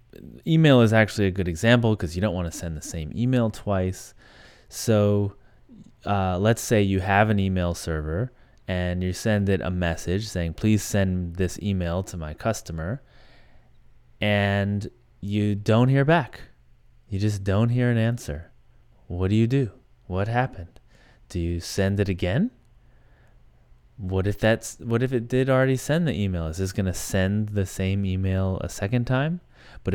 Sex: male